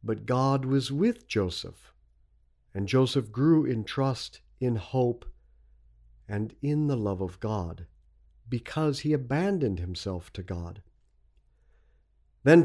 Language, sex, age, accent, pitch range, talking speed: English, male, 50-69, American, 95-160 Hz, 120 wpm